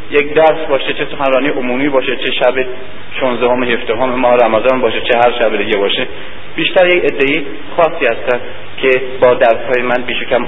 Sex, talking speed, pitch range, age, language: male, 185 wpm, 120-140 Hz, 30-49, Persian